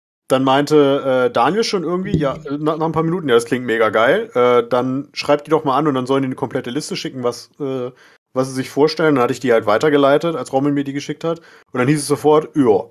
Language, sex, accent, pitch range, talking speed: German, male, German, 115-145 Hz, 255 wpm